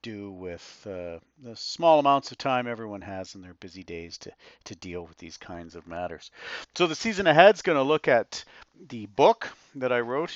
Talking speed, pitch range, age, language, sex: 210 wpm, 95-120 Hz, 40-59, English, male